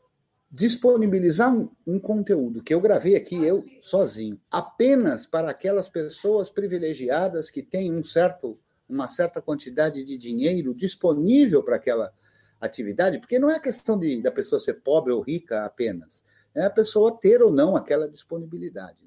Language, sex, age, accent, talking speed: Portuguese, male, 50-69, Brazilian, 150 wpm